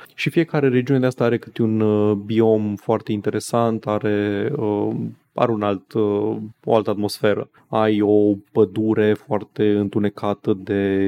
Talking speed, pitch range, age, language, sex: 120 wpm, 100-115 Hz, 20-39, Romanian, male